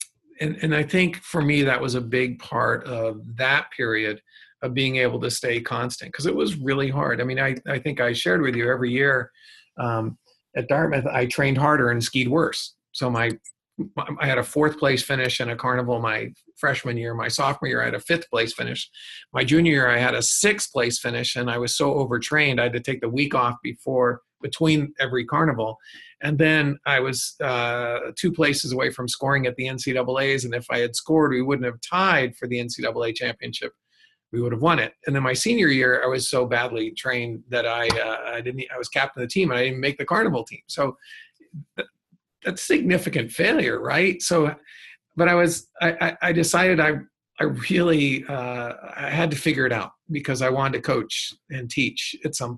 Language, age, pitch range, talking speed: English, 40-59, 120-155 Hz, 210 wpm